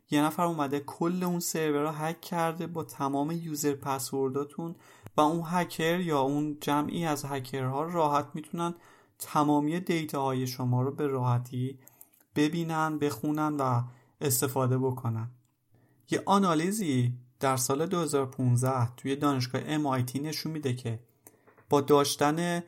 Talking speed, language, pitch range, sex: 125 wpm, Persian, 130-155 Hz, male